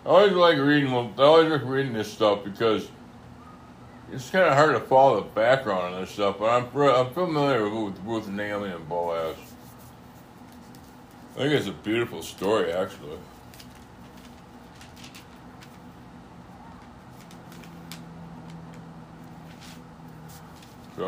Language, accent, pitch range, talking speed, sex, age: English, American, 85-135 Hz, 110 wpm, male, 60-79